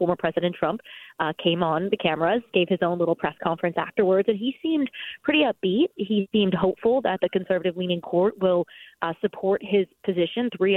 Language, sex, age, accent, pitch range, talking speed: English, female, 20-39, American, 165-195 Hz, 185 wpm